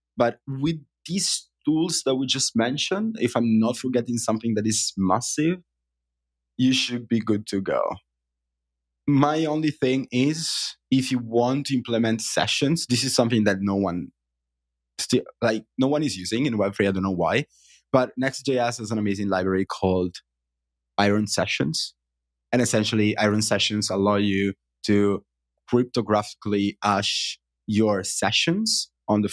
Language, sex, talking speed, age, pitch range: English, male, 145 wpm, 20-39, 85-120 Hz